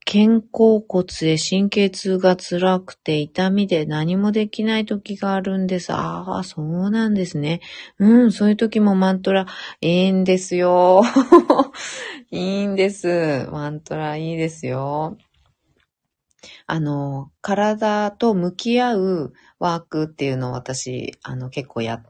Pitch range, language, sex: 150-205 Hz, Japanese, female